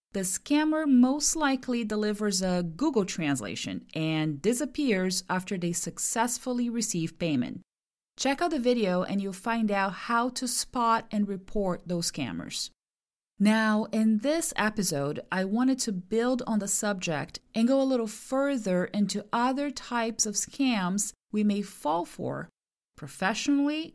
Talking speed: 140 wpm